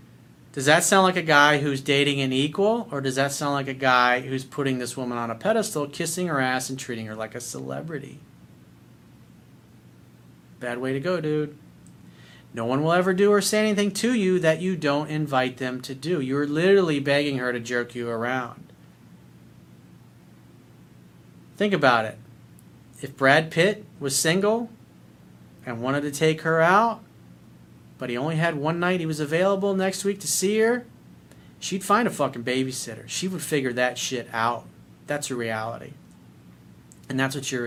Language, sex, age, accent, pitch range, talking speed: English, male, 40-59, American, 115-165 Hz, 175 wpm